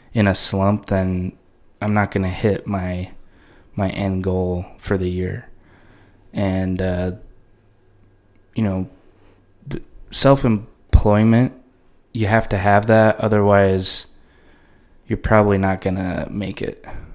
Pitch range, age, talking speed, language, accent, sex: 95-110 Hz, 20-39, 115 wpm, English, American, male